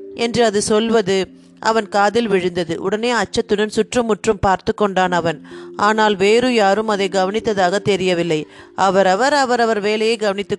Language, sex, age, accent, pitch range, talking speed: Tamil, female, 30-49, native, 185-225 Hz, 125 wpm